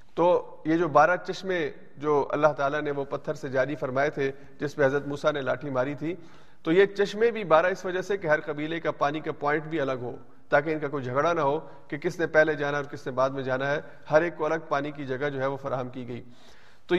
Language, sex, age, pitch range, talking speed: Urdu, male, 40-59, 140-175 Hz, 260 wpm